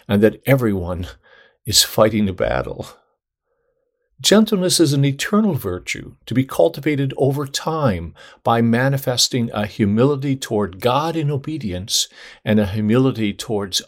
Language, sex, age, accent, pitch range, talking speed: English, male, 50-69, American, 100-145 Hz, 125 wpm